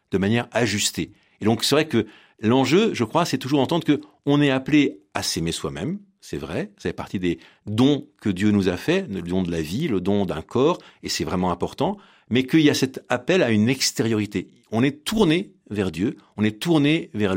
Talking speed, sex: 220 wpm, male